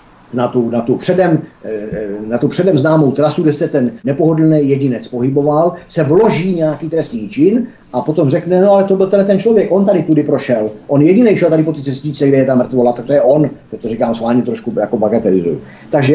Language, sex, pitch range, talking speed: Czech, male, 130-170 Hz, 210 wpm